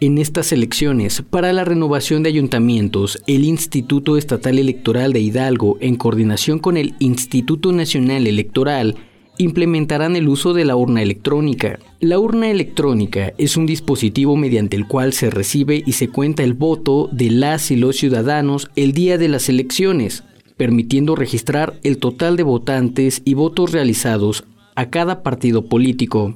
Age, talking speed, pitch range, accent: 40-59, 155 wpm, 125-155 Hz, Mexican